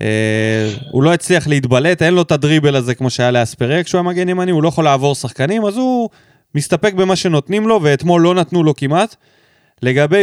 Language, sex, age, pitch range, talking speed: Hebrew, male, 20-39, 140-205 Hz, 195 wpm